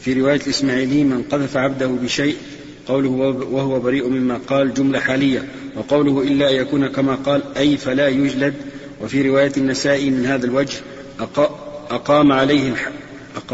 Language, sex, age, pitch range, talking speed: Arabic, male, 50-69, 135-145 Hz, 125 wpm